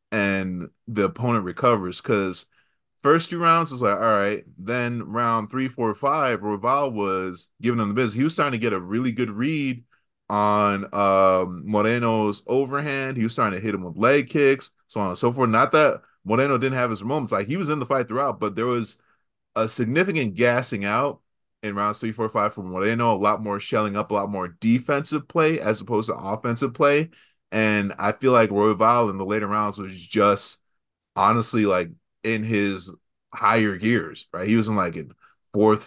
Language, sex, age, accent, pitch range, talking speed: English, male, 20-39, American, 105-125 Hz, 195 wpm